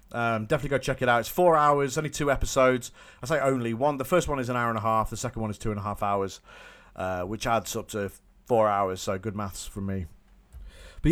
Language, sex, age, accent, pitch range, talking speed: English, male, 40-59, British, 90-130 Hz, 255 wpm